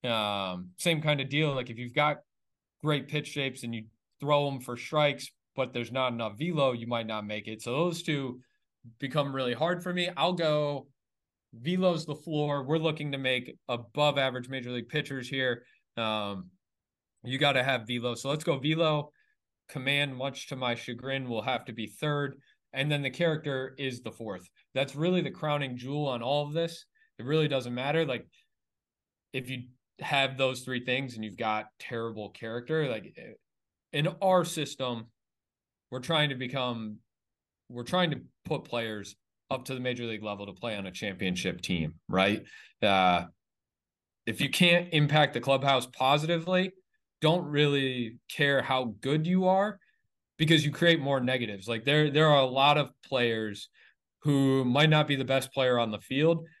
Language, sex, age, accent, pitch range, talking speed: English, male, 20-39, American, 115-150 Hz, 175 wpm